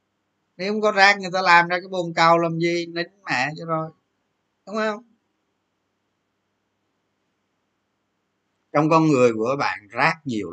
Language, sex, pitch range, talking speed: Vietnamese, male, 105-160 Hz, 150 wpm